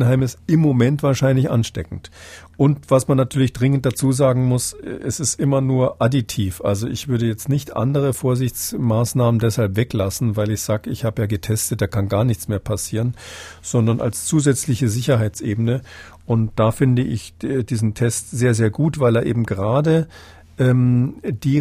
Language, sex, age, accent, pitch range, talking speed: German, male, 50-69, German, 115-135 Hz, 165 wpm